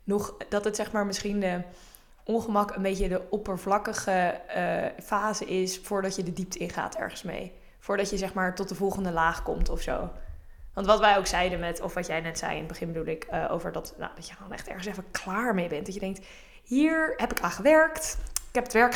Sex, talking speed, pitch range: female, 235 wpm, 180-210 Hz